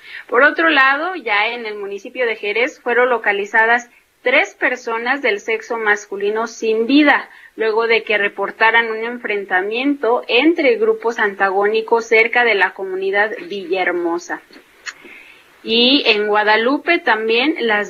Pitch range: 210-265 Hz